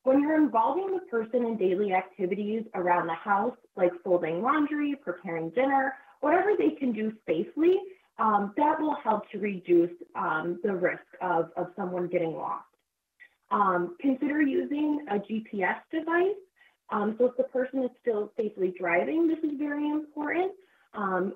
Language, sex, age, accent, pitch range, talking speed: English, female, 20-39, American, 185-280 Hz, 155 wpm